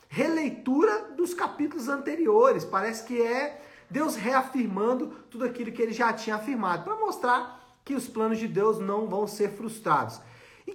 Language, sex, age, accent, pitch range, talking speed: Portuguese, male, 50-69, Brazilian, 200-250 Hz, 155 wpm